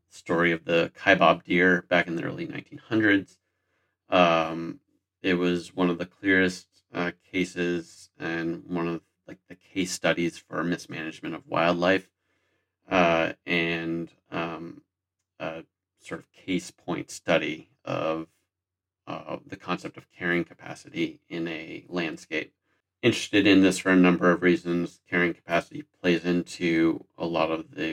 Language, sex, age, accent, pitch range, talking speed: English, male, 30-49, American, 85-95 Hz, 140 wpm